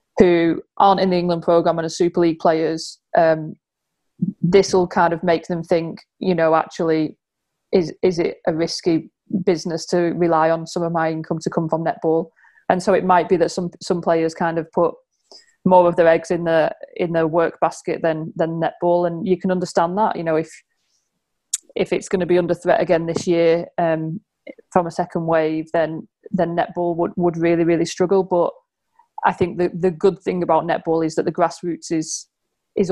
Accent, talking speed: British, 205 wpm